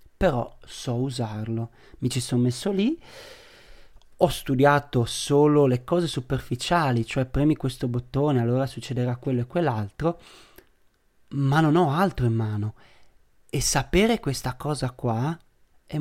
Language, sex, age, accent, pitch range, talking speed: Italian, male, 30-49, native, 120-155 Hz, 130 wpm